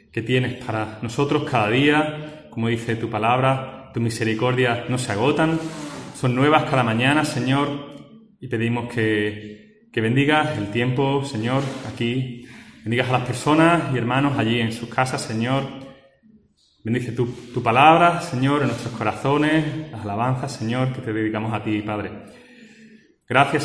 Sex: male